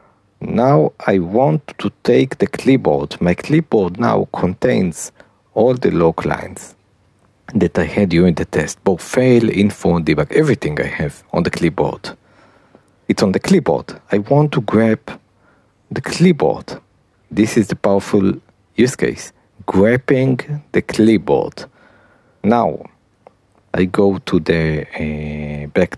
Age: 50-69